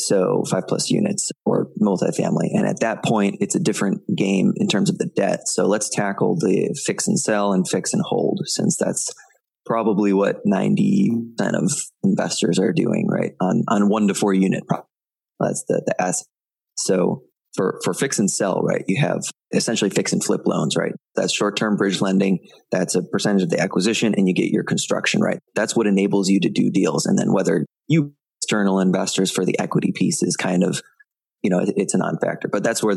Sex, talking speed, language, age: male, 195 wpm, English, 20-39